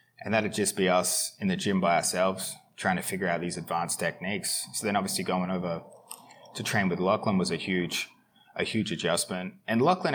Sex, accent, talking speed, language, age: male, Australian, 200 wpm, English, 20-39